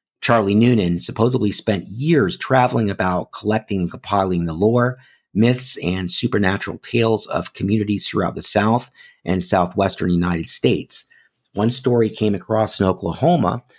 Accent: American